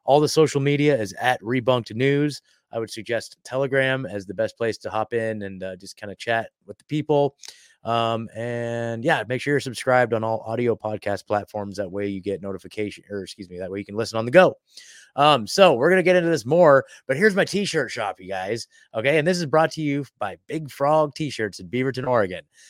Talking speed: 225 wpm